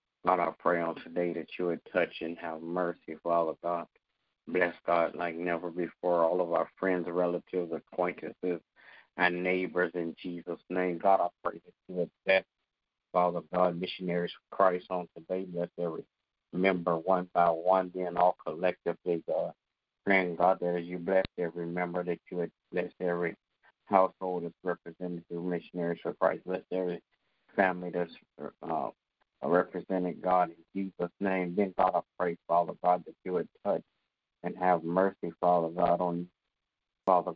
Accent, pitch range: American, 85-90 Hz